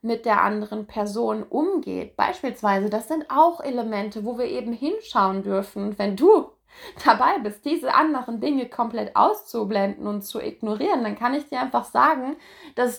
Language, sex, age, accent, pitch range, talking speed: German, female, 20-39, German, 215-280 Hz, 155 wpm